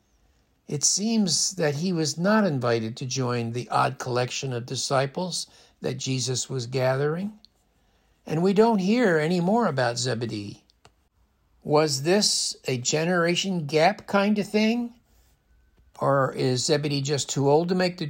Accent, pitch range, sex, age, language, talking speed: American, 130-190 Hz, male, 60-79, English, 145 wpm